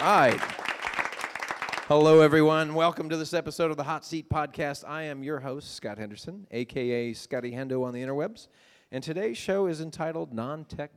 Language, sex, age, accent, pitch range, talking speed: English, male, 40-59, American, 115-155 Hz, 165 wpm